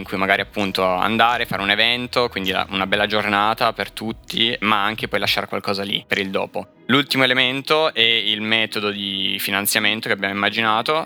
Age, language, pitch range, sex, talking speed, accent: 20-39, Italian, 105-115 Hz, male, 185 wpm, native